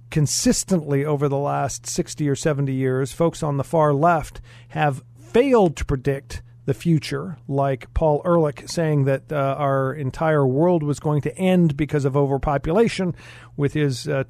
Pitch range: 140-180 Hz